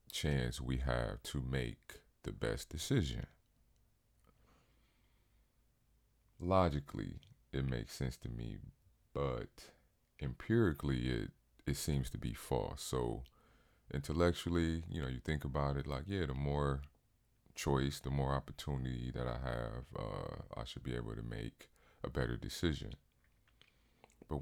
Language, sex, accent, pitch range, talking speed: English, male, American, 65-80 Hz, 130 wpm